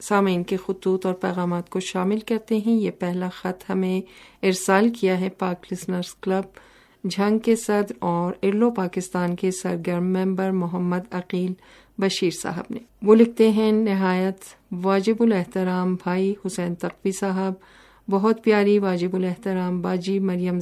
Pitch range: 185-205 Hz